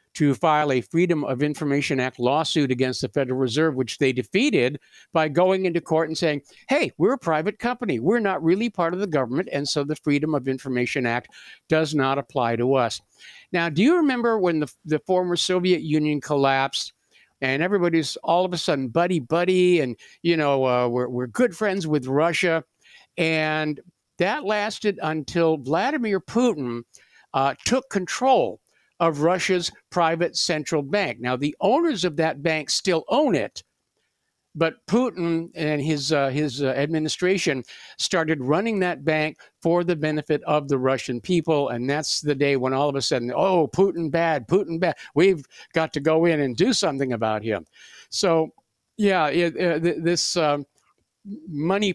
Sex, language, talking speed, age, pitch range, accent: male, English, 170 wpm, 60-79, 140-180 Hz, American